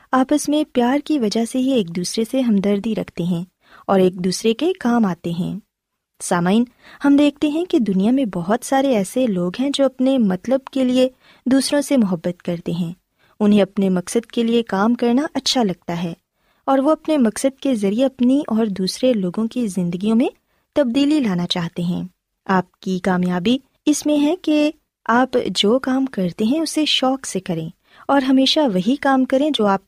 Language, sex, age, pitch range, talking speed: Urdu, female, 20-39, 190-270 Hz, 185 wpm